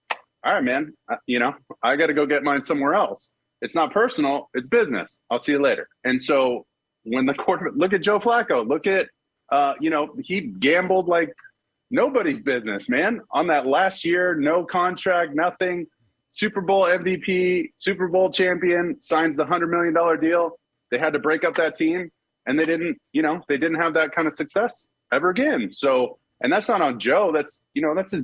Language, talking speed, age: English, 195 wpm, 30-49